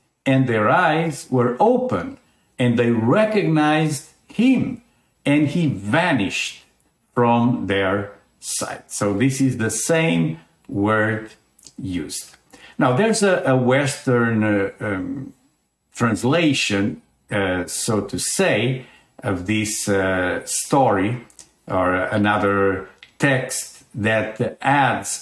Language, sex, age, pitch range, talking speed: English, male, 50-69, 105-145 Hz, 100 wpm